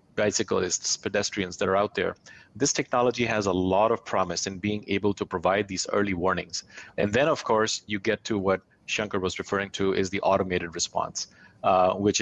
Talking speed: 190 wpm